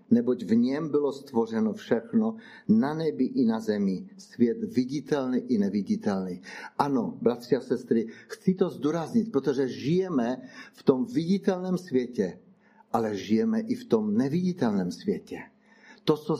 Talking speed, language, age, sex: 135 wpm, Czech, 60-79, male